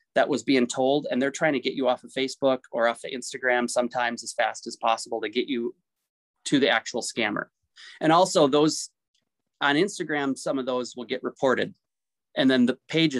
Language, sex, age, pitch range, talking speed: English, male, 30-49, 125-155 Hz, 200 wpm